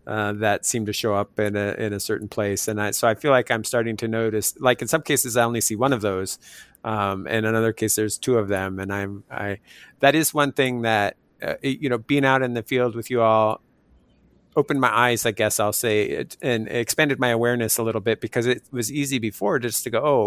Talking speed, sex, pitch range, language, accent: 250 wpm, male, 105-125 Hz, English, American